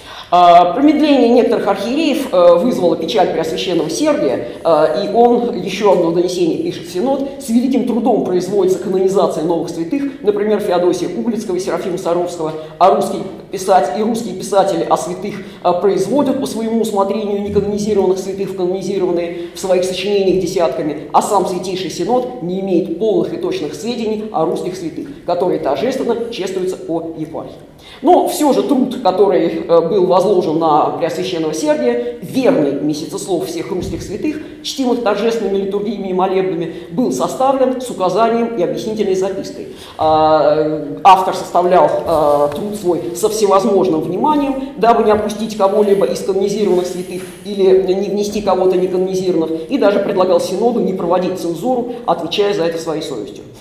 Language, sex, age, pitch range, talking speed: Russian, female, 40-59, 175-220 Hz, 145 wpm